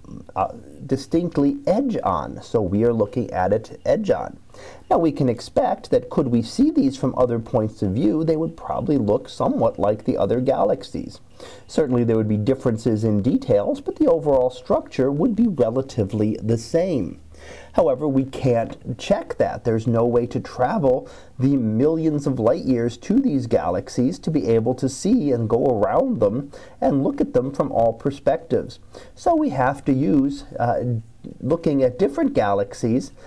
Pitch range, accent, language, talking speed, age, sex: 115-155 Hz, American, English, 170 wpm, 40-59, male